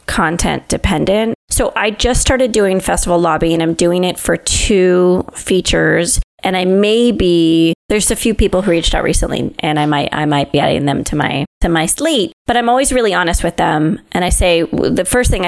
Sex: female